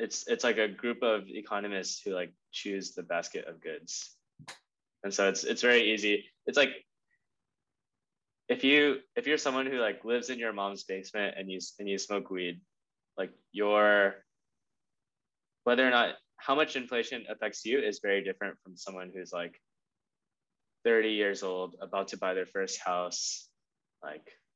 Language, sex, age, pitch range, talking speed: English, male, 10-29, 95-125 Hz, 165 wpm